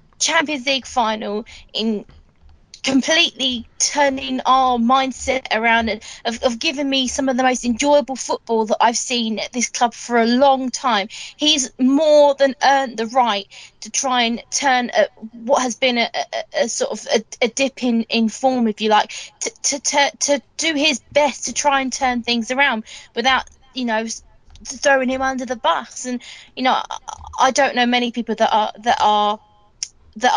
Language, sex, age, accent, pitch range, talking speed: English, female, 20-39, British, 225-280 Hz, 185 wpm